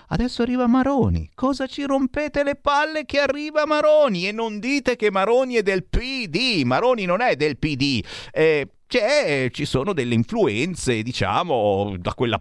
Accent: native